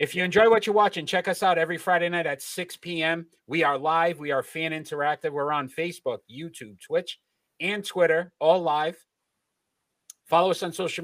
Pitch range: 135-170 Hz